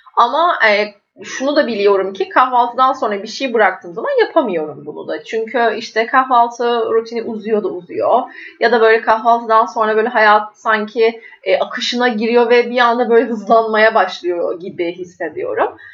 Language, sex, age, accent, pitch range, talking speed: Turkish, female, 30-49, native, 220-275 Hz, 155 wpm